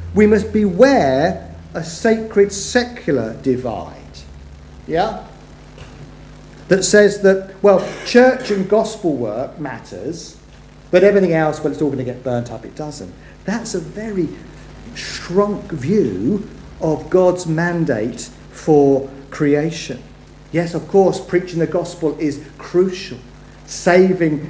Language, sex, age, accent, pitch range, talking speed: English, male, 50-69, British, 155-205 Hz, 120 wpm